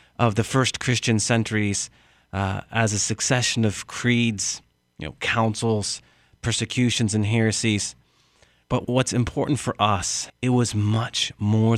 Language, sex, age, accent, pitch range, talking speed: English, male, 30-49, American, 105-120 Hz, 130 wpm